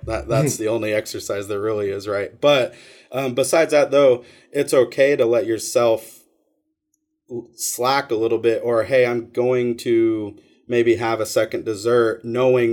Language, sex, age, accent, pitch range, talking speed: English, male, 30-49, American, 110-130 Hz, 165 wpm